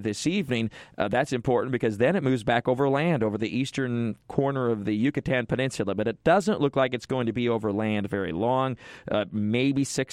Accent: American